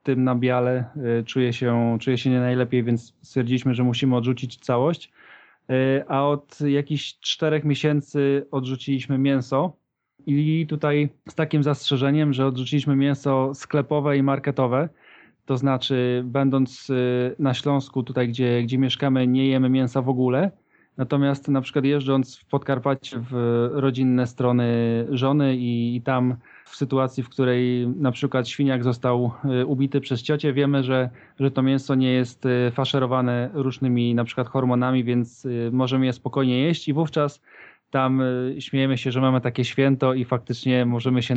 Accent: native